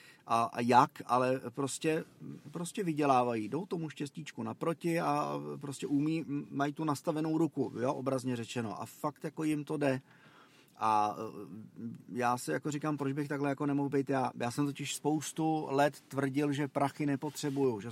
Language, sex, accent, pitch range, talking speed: Czech, male, native, 130-150 Hz, 160 wpm